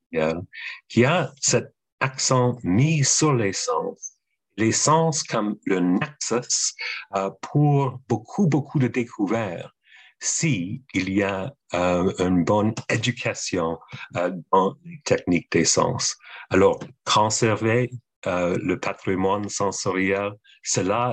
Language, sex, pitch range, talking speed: French, male, 90-130 Hz, 110 wpm